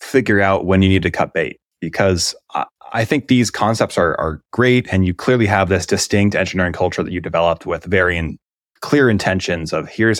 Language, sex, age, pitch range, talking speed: English, male, 20-39, 85-100 Hz, 205 wpm